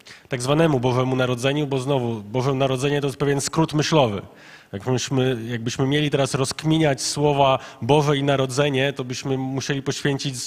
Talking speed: 155 wpm